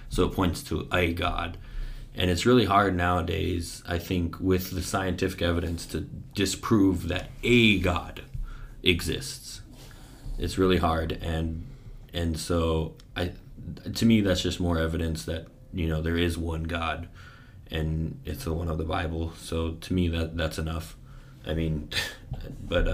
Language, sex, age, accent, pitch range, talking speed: English, male, 20-39, American, 85-120 Hz, 155 wpm